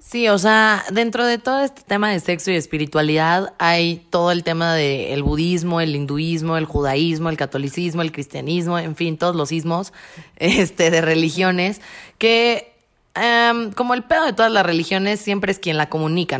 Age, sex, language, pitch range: 20-39, female, Spanish, 160-190 Hz